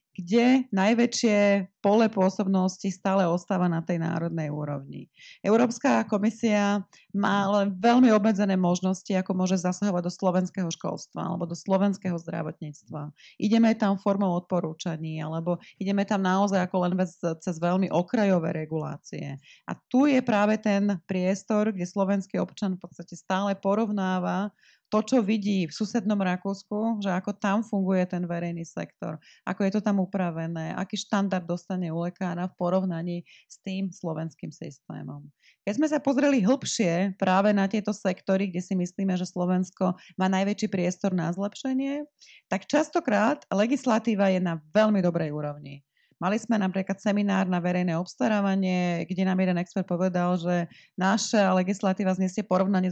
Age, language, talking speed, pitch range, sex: 30-49, Slovak, 145 wpm, 175-205 Hz, female